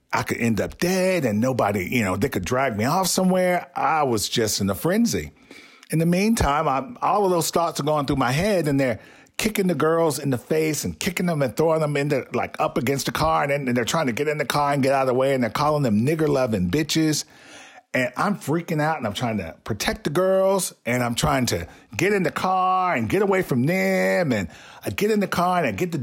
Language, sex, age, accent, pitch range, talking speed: English, male, 40-59, American, 120-170 Hz, 250 wpm